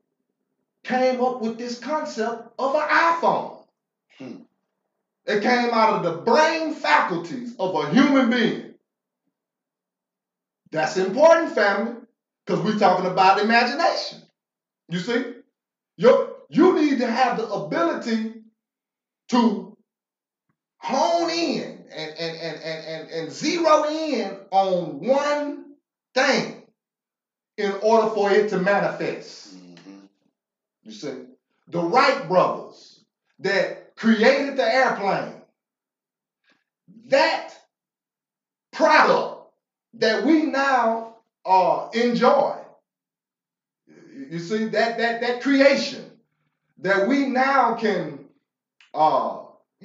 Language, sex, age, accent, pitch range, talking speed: English, male, 30-49, American, 205-275 Hz, 100 wpm